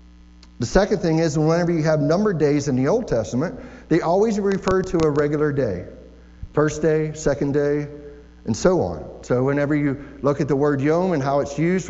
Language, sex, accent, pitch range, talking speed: English, male, American, 135-170 Hz, 195 wpm